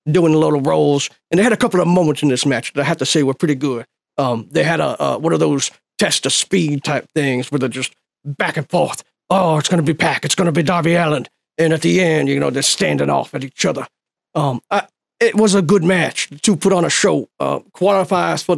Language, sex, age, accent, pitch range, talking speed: English, male, 40-59, American, 150-185 Hz, 260 wpm